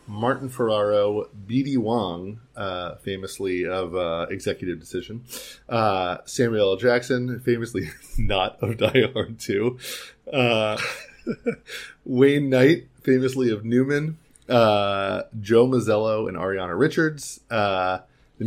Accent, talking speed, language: American, 110 wpm, English